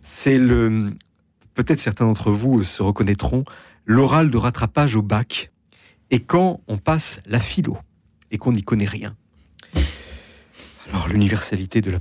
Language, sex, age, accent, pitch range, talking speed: French, male, 40-59, French, 105-160 Hz, 140 wpm